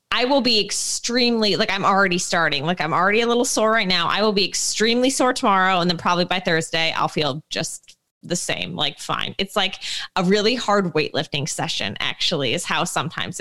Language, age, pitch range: English, 20-39, 180-220 Hz